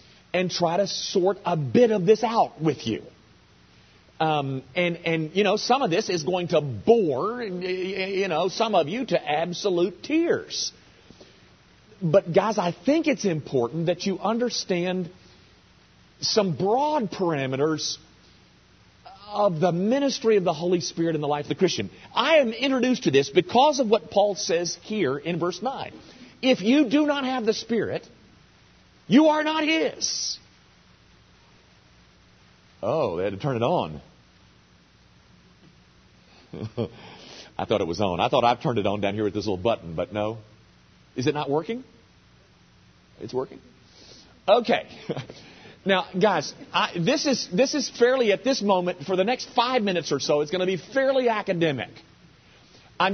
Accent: American